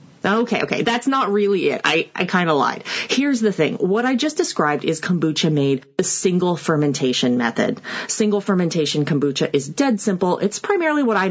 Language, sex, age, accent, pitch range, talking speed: English, female, 30-49, American, 145-220 Hz, 180 wpm